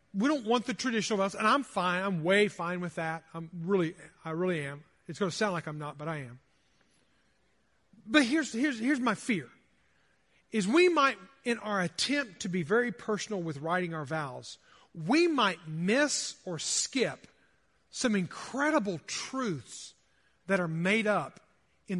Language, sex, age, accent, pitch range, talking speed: English, male, 40-59, American, 185-255 Hz, 170 wpm